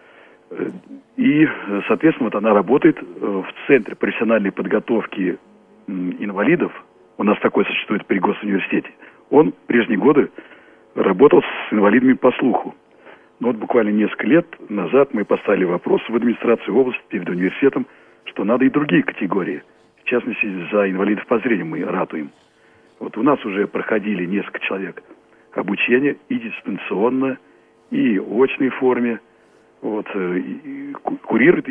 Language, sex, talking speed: Russian, male, 130 wpm